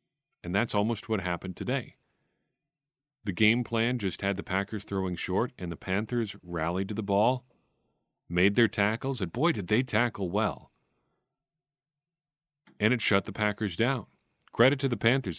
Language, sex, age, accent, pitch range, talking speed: English, male, 40-59, American, 90-130 Hz, 160 wpm